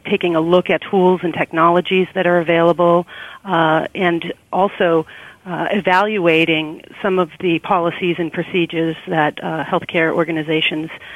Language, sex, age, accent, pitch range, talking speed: English, female, 40-59, American, 160-180 Hz, 135 wpm